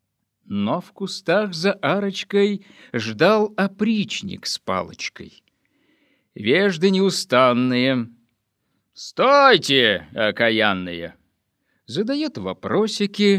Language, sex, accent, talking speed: Russian, male, native, 65 wpm